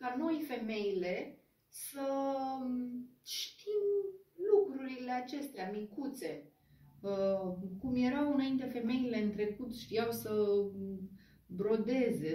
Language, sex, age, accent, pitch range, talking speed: Romanian, female, 30-49, native, 190-255 Hz, 85 wpm